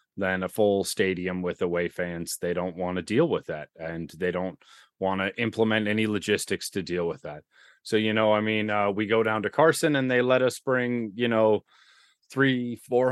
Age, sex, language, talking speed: 30-49, male, English, 210 wpm